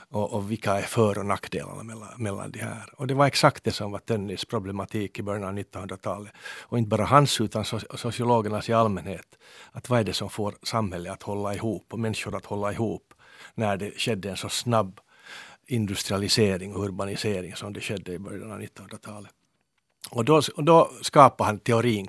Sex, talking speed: male, 185 wpm